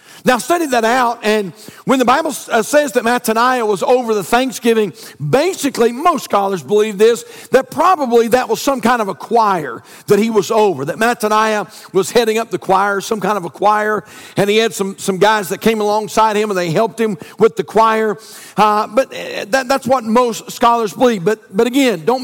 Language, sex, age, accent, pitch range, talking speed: English, male, 50-69, American, 210-265 Hz, 200 wpm